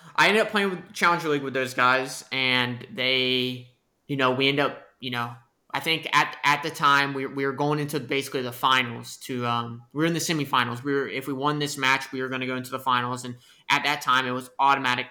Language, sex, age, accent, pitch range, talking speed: English, male, 20-39, American, 125-140 Hz, 245 wpm